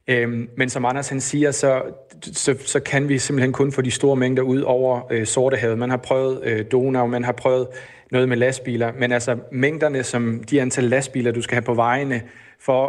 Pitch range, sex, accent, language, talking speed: 120-130 Hz, male, native, Danish, 205 wpm